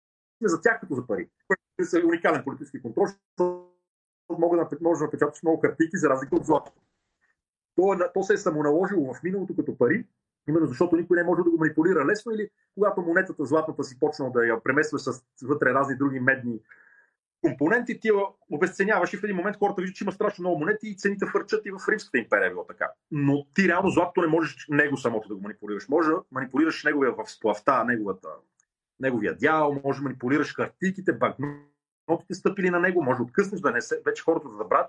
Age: 40-59